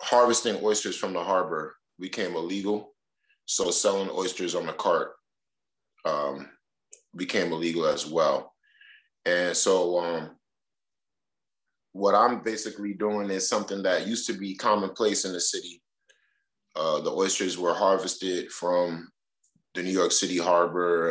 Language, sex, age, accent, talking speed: English, male, 30-49, American, 130 wpm